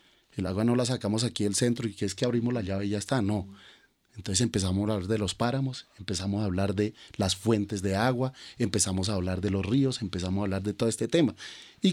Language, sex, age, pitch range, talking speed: Spanish, male, 30-49, 105-145 Hz, 240 wpm